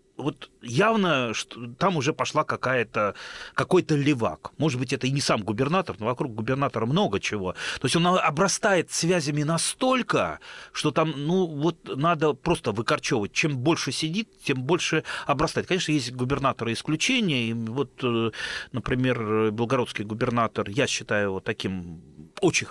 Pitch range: 120-175 Hz